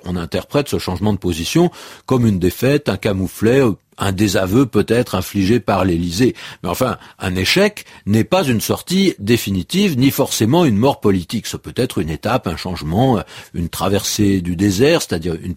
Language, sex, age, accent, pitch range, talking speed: French, male, 50-69, French, 100-145 Hz, 165 wpm